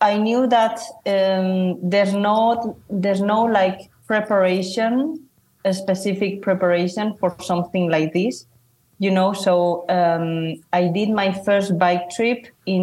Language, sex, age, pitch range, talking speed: English, female, 30-49, 170-195 Hz, 130 wpm